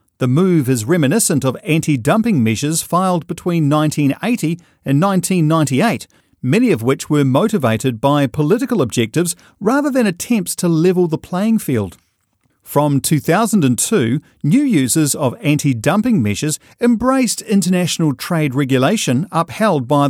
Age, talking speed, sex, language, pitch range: 40-59, 120 wpm, male, English, 130-190 Hz